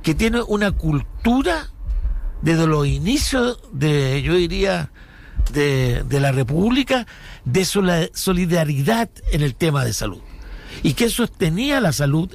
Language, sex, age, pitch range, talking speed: Spanish, male, 60-79, 145-200 Hz, 125 wpm